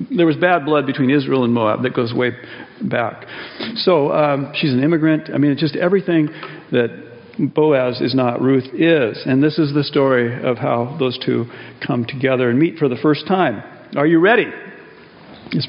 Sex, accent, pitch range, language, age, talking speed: male, American, 145-195 Hz, English, 50-69, 185 wpm